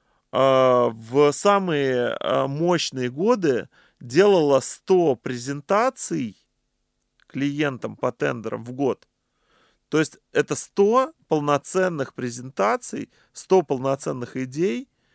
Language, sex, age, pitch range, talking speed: Russian, male, 20-39, 130-175 Hz, 85 wpm